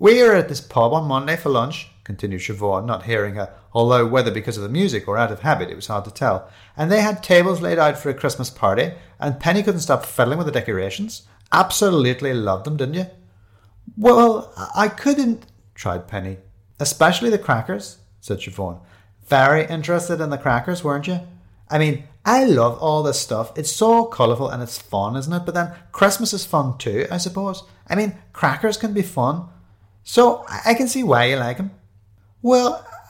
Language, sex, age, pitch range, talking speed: English, male, 30-49, 105-170 Hz, 195 wpm